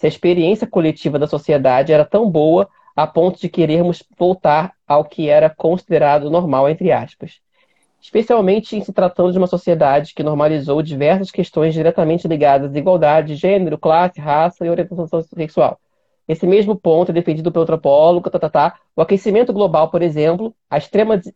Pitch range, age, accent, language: 150-185 Hz, 20-39, Brazilian, Portuguese